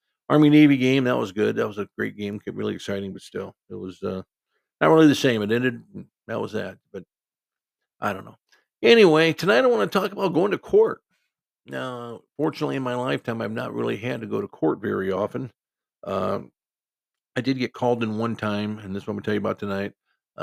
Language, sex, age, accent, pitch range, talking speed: English, male, 50-69, American, 95-125 Hz, 220 wpm